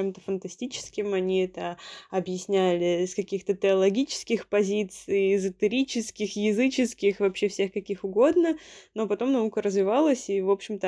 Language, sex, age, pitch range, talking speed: Russian, female, 20-39, 180-205 Hz, 125 wpm